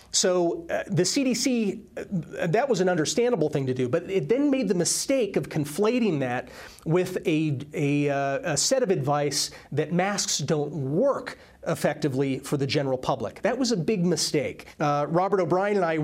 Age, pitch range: 30-49, 145-185 Hz